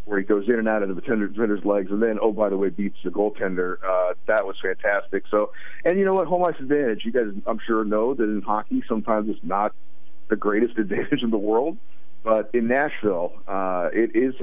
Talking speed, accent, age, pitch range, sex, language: 230 wpm, American, 50-69, 100-120 Hz, male, English